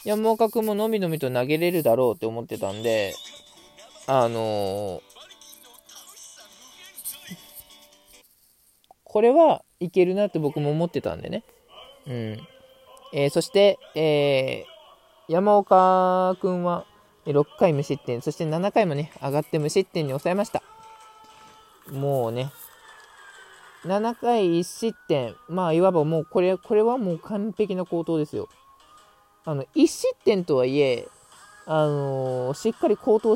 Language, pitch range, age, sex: Japanese, 145-225 Hz, 20-39, male